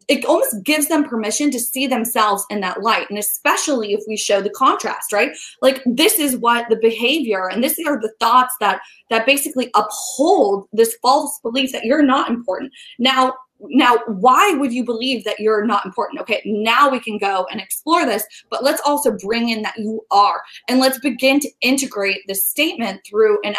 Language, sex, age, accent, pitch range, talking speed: English, female, 20-39, American, 205-265 Hz, 195 wpm